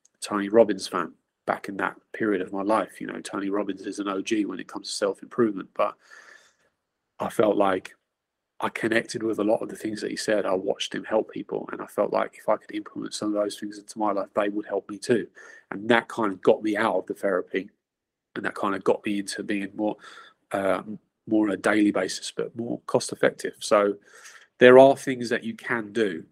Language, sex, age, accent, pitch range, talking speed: English, male, 30-49, British, 100-120 Hz, 225 wpm